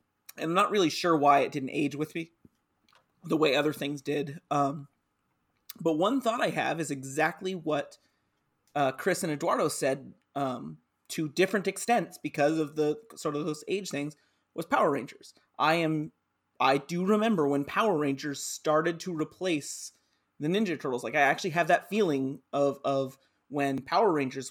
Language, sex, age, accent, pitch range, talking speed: English, male, 30-49, American, 140-170 Hz, 170 wpm